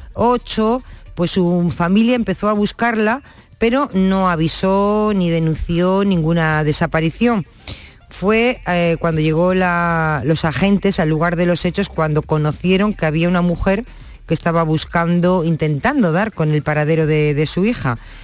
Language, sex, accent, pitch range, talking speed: Spanish, female, Spanish, 155-185 Hz, 140 wpm